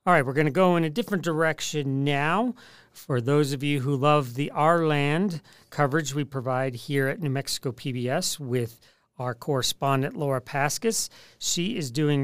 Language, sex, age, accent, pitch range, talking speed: English, male, 40-59, American, 130-160 Hz, 175 wpm